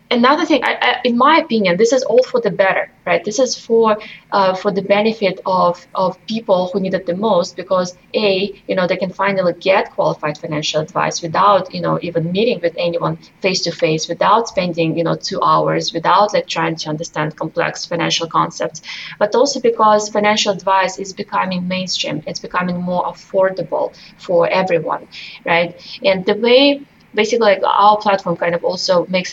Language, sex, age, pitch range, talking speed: English, female, 20-39, 175-215 Hz, 185 wpm